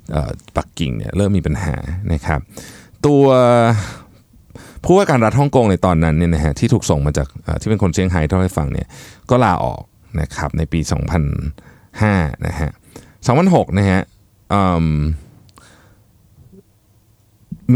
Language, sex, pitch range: Thai, male, 85-110 Hz